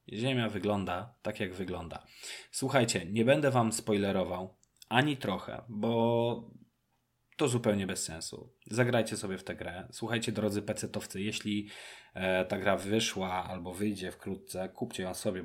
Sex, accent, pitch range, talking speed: male, native, 95-115 Hz, 135 wpm